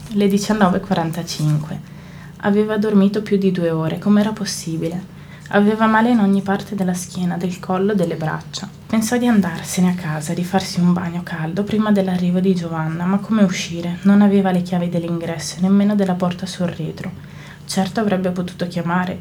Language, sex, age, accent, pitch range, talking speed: Italian, female, 20-39, native, 175-200 Hz, 165 wpm